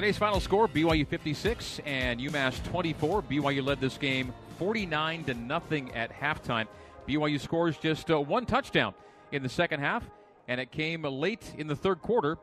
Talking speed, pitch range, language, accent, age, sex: 170 wpm, 145-195 Hz, English, American, 40-59, male